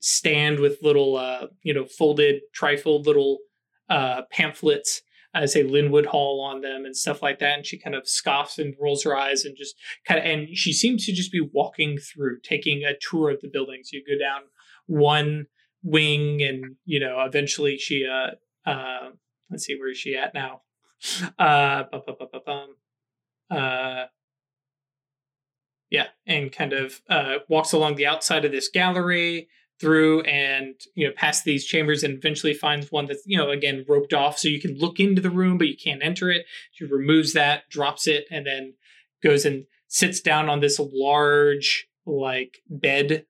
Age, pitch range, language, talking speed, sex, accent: 20-39, 140-160 Hz, English, 185 wpm, male, American